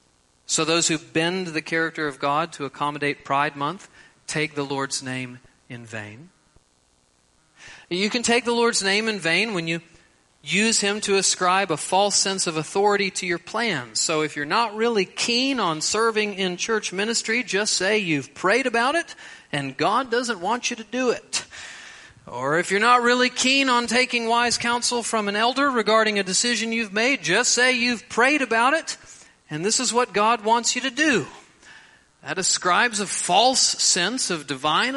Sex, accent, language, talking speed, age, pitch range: male, American, English, 180 wpm, 40-59, 145-230 Hz